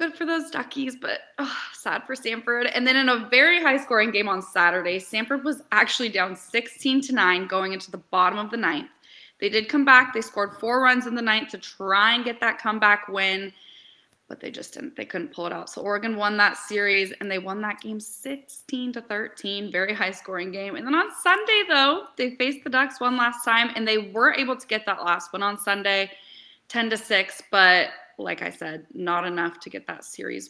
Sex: female